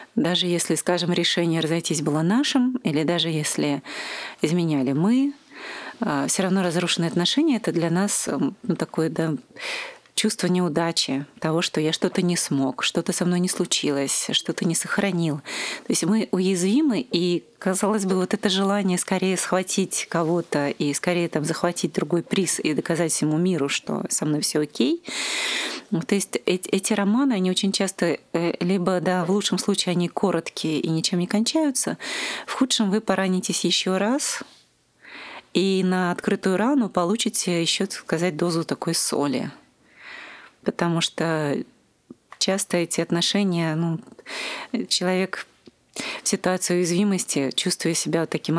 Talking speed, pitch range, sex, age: 140 wpm, 165-200 Hz, female, 30-49